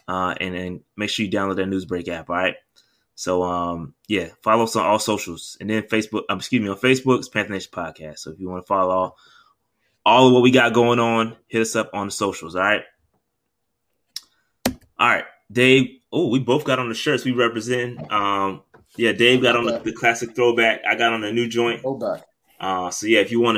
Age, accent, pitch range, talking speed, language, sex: 20-39, American, 100-125 Hz, 225 wpm, English, male